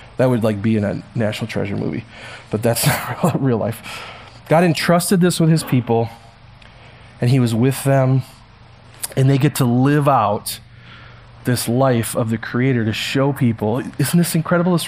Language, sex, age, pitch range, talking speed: English, male, 30-49, 120-145 Hz, 175 wpm